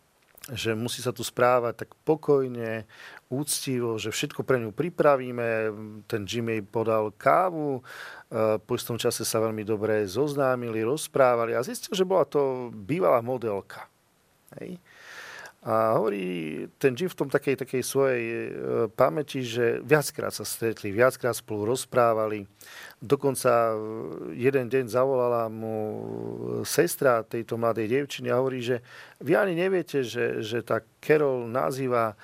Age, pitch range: 40-59, 110-130 Hz